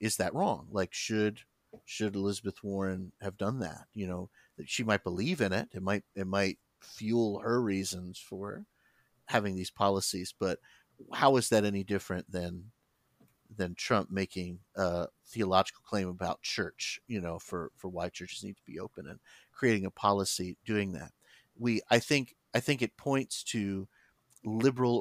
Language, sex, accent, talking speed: English, male, American, 170 wpm